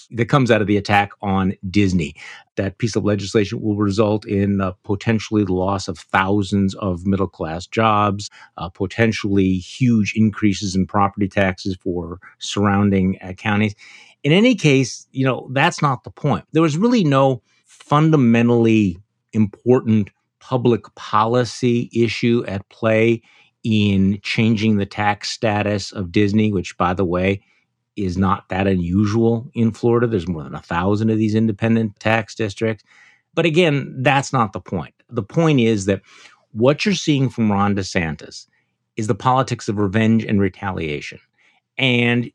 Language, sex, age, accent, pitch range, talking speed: English, male, 50-69, American, 100-120 Hz, 150 wpm